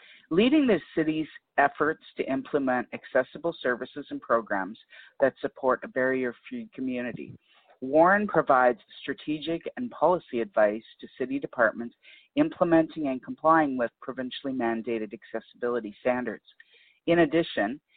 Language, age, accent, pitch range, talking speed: English, 50-69, American, 125-155 Hz, 115 wpm